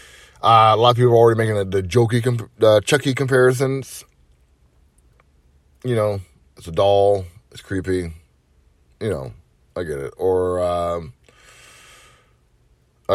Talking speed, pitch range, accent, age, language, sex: 130 wpm, 95-130 Hz, American, 30-49, English, male